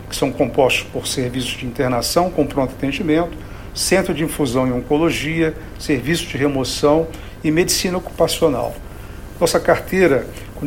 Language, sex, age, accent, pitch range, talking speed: Portuguese, male, 50-69, Brazilian, 130-165 Hz, 135 wpm